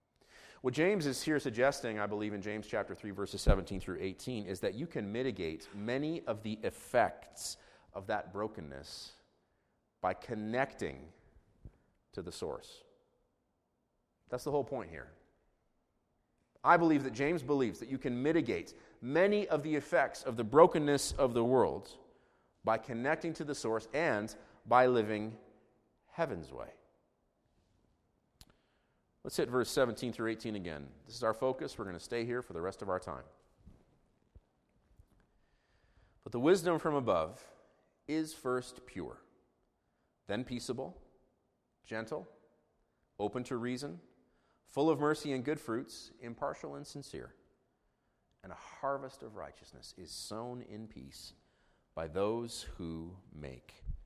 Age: 30-49